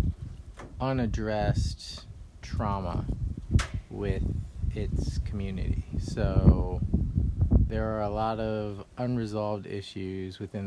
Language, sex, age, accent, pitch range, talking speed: English, male, 30-49, American, 90-105 Hz, 80 wpm